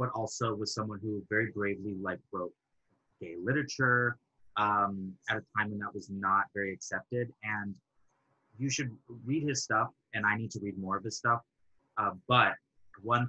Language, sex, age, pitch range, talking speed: English, male, 30-49, 100-125 Hz, 175 wpm